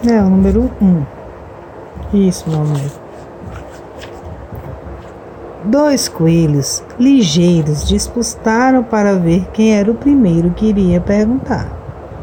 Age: 50-69